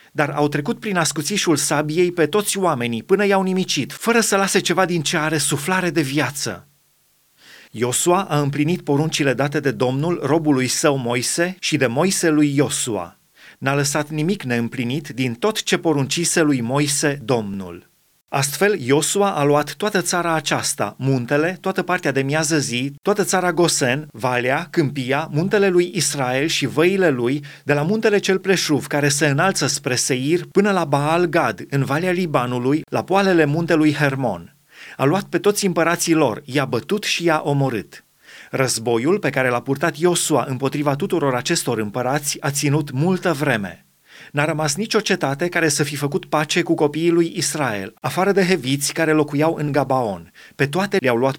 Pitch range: 140-175 Hz